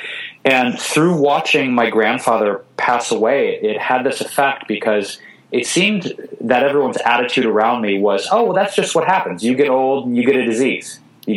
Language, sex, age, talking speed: English, male, 30-49, 180 wpm